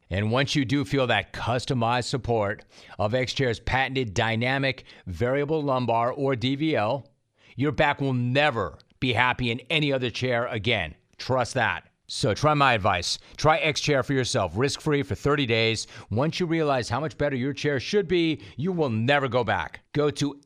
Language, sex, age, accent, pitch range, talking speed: English, male, 40-59, American, 115-140 Hz, 170 wpm